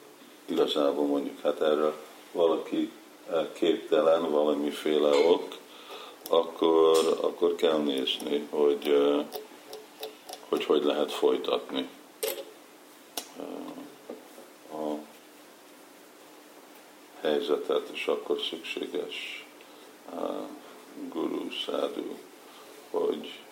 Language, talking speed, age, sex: Hungarian, 65 wpm, 50-69, male